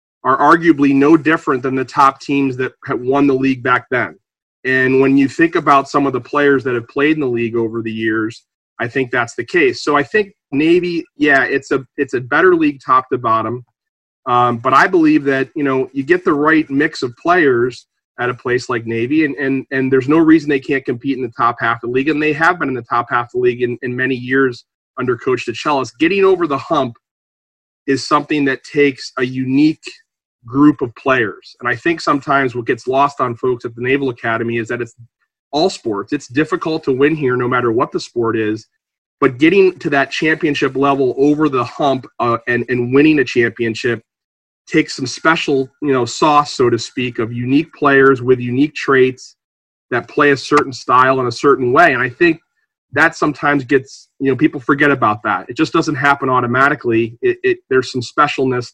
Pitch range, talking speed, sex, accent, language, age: 125-150 Hz, 210 wpm, male, American, English, 30-49